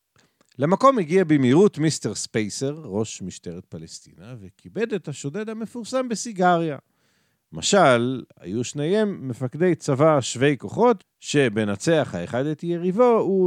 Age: 50-69